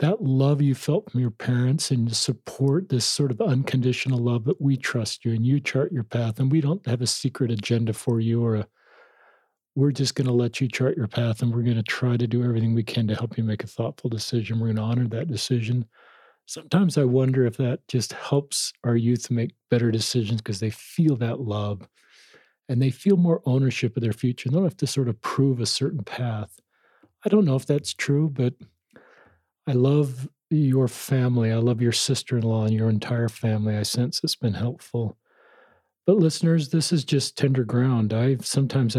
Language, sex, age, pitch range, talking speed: English, male, 40-59, 115-135 Hz, 205 wpm